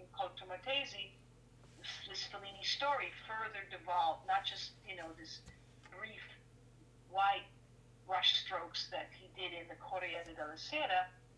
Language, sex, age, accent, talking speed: English, female, 50-69, American, 125 wpm